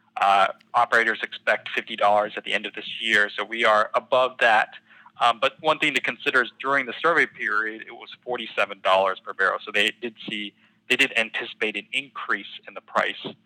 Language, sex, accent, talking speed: English, male, American, 190 wpm